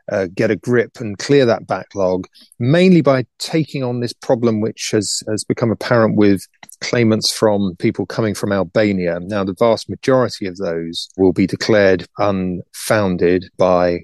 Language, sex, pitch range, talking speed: English, male, 95-110 Hz, 160 wpm